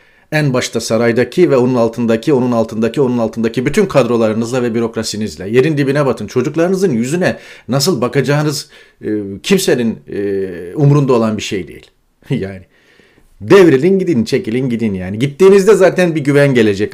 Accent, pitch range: native, 115-165 Hz